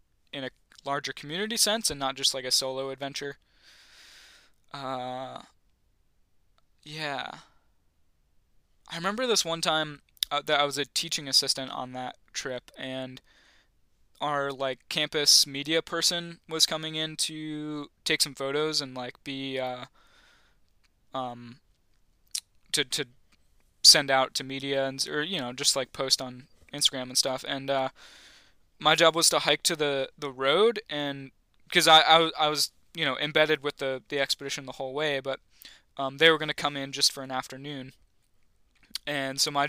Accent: American